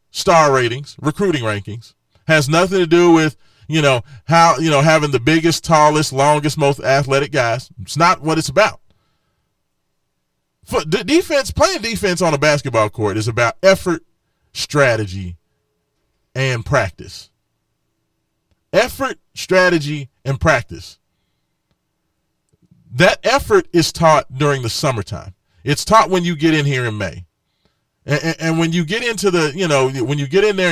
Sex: male